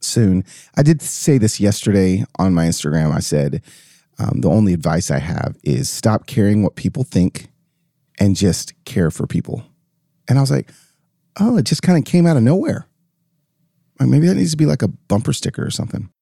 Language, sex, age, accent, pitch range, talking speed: English, male, 30-49, American, 100-160 Hz, 190 wpm